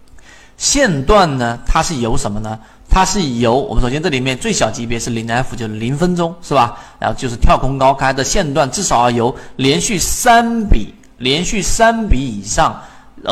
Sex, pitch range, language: male, 115-165 Hz, Chinese